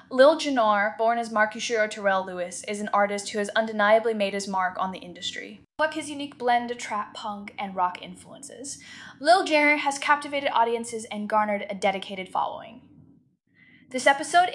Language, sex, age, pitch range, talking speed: English, female, 10-29, 200-245 Hz, 170 wpm